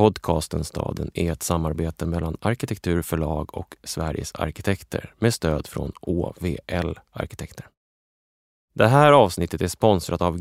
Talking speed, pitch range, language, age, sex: 120 wpm, 85-115 Hz, English, 20-39, male